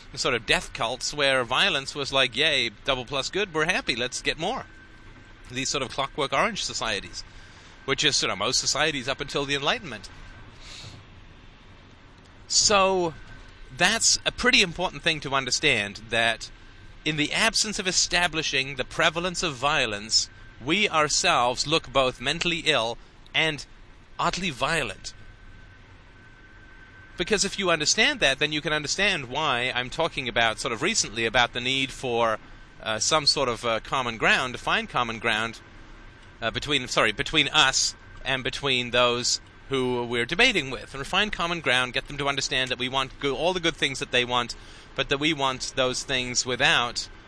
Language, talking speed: English, 165 wpm